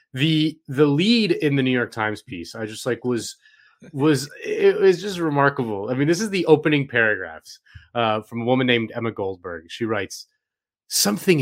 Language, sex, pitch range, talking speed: English, male, 115-160 Hz, 185 wpm